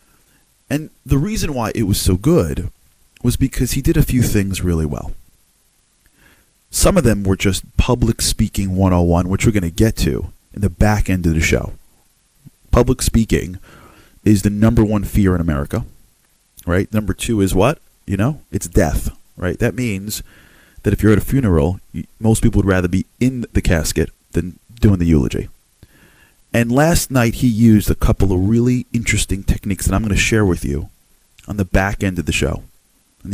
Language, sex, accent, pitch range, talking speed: English, male, American, 90-115 Hz, 185 wpm